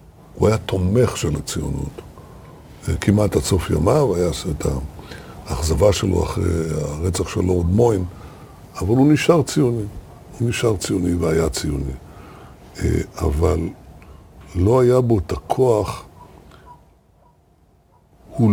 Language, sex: Hebrew, male